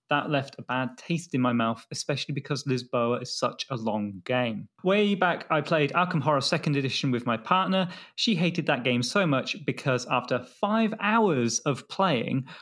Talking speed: 185 wpm